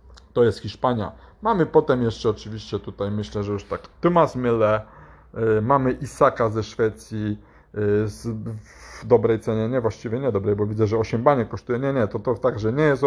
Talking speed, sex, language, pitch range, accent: 180 wpm, male, Polish, 115-140 Hz, native